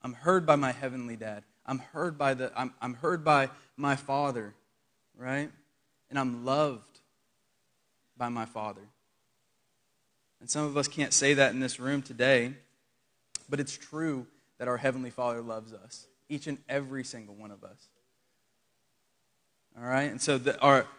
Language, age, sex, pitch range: English, 20-39, male, 120-140 Hz